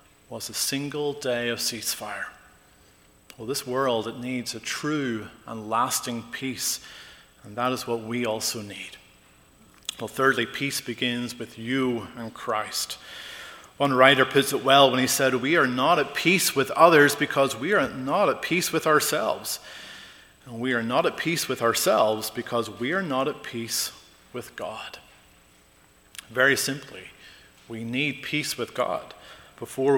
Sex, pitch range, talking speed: male, 115-140 Hz, 155 wpm